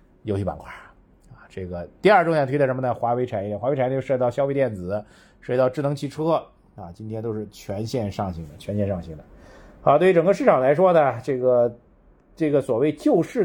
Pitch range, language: 100-140 Hz, Chinese